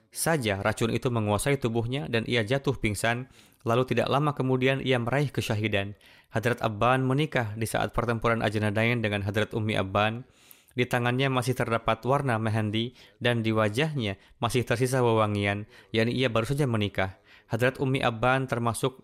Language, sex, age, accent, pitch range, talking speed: Indonesian, male, 20-39, native, 110-130 Hz, 150 wpm